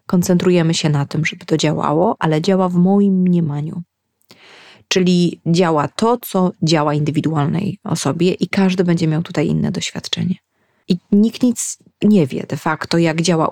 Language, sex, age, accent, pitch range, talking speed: Polish, female, 20-39, native, 155-190 Hz, 155 wpm